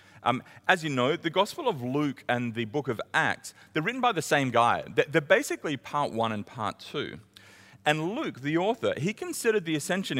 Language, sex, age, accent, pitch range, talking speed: English, male, 40-59, Australian, 105-165 Hz, 200 wpm